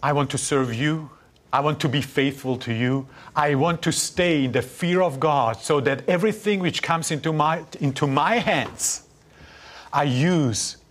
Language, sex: English, male